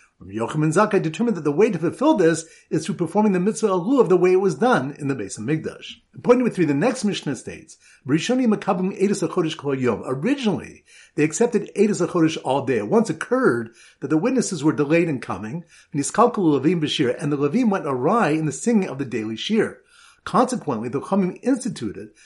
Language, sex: English, male